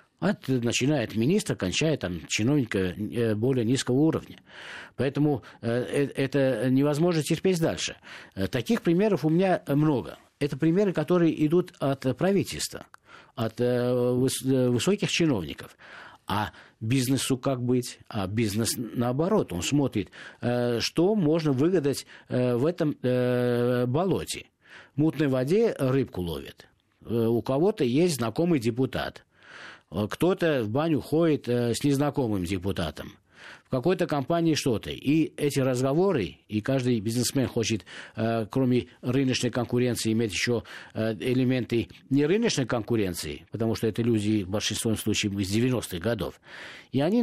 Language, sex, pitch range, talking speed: Russian, male, 115-150 Hz, 120 wpm